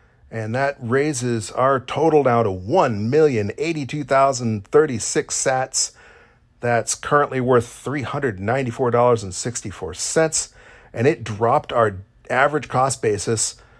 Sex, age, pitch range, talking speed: male, 40-59, 110-130 Hz, 85 wpm